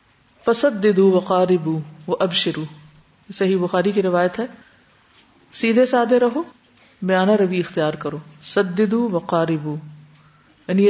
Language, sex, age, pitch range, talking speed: Urdu, female, 50-69, 165-240 Hz, 120 wpm